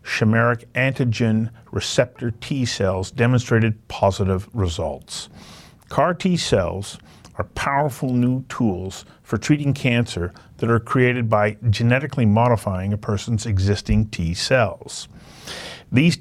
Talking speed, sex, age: 100 wpm, male, 50-69